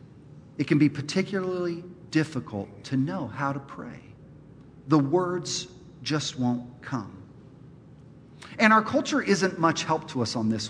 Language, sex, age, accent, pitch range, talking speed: English, male, 40-59, American, 140-225 Hz, 140 wpm